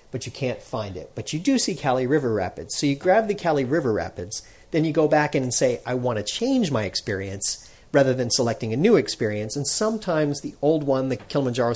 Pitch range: 115-160 Hz